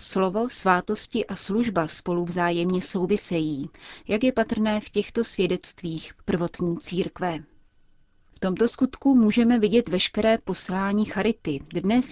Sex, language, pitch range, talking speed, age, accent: female, Czech, 170-210 Hz, 120 wpm, 30-49, native